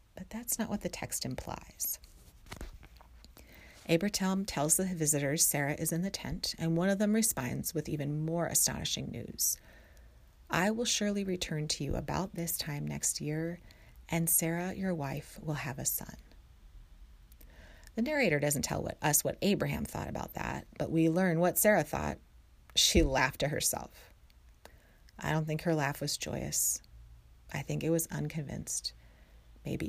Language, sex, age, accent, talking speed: English, female, 30-49, American, 160 wpm